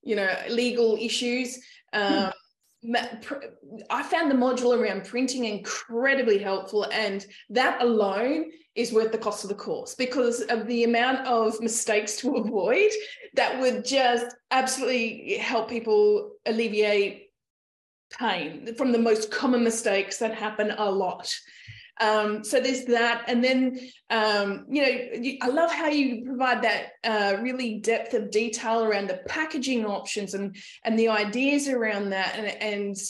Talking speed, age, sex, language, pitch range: 145 wpm, 20-39, female, English, 215-260 Hz